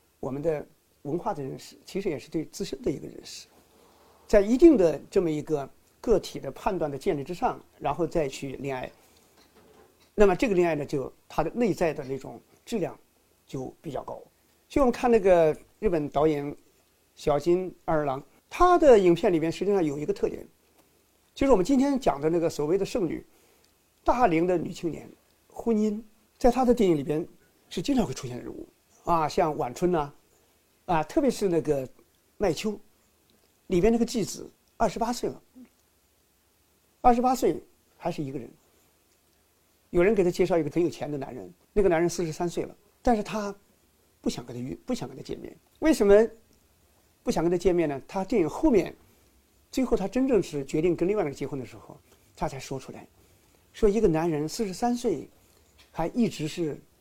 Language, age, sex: Chinese, 50-69, male